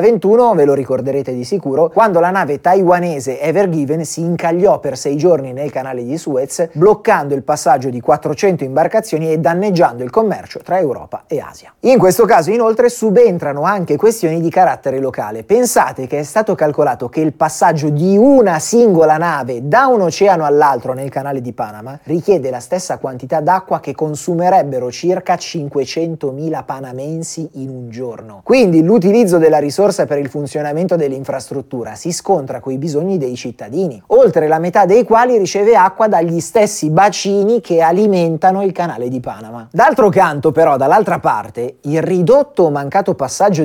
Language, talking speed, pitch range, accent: Italian, 160 wpm, 140-190 Hz, native